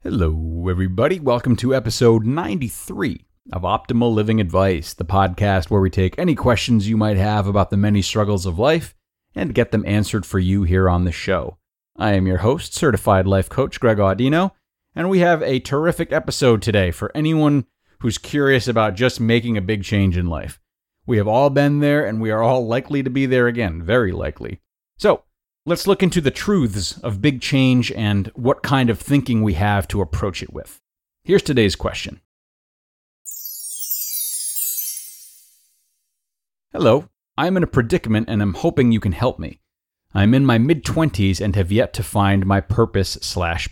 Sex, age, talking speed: male, 30-49, 175 wpm